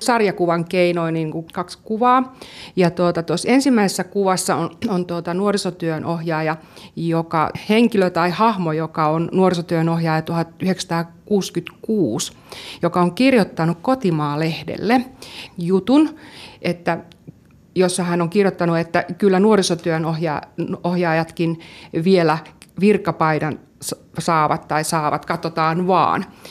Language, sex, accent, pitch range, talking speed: Finnish, female, native, 165-195 Hz, 95 wpm